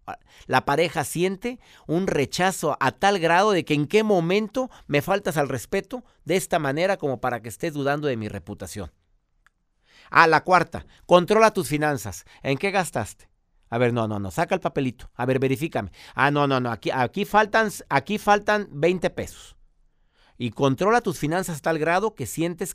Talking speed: 180 wpm